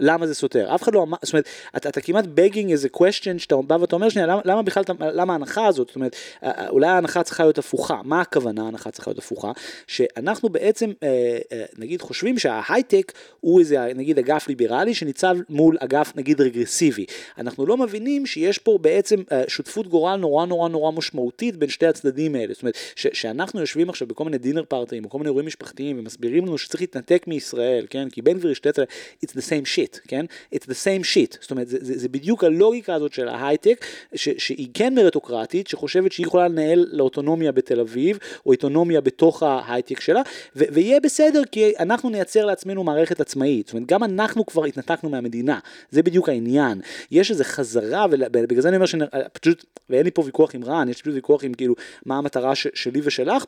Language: Hebrew